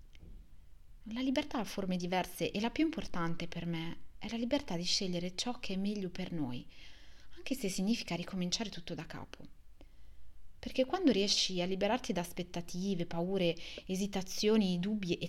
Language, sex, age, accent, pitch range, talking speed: Italian, female, 30-49, native, 170-230 Hz, 155 wpm